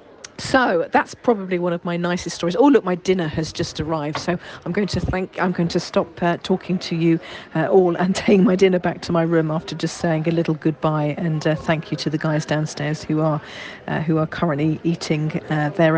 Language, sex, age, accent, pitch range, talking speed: English, female, 40-59, British, 160-210 Hz, 230 wpm